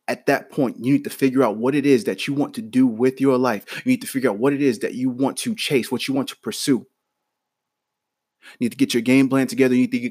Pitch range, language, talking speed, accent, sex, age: 115-130 Hz, English, 280 wpm, American, male, 20-39